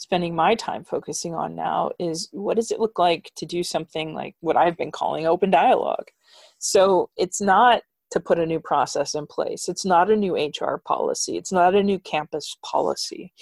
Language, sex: English, female